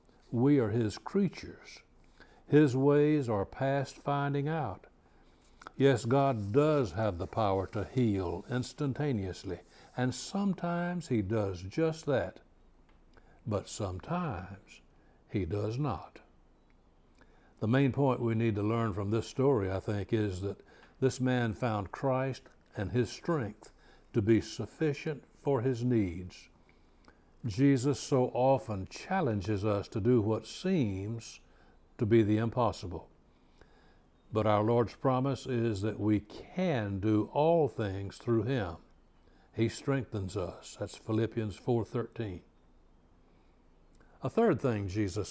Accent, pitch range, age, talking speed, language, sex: American, 100-135 Hz, 60-79, 125 wpm, English, male